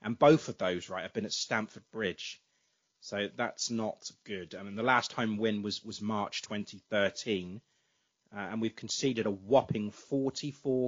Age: 30-49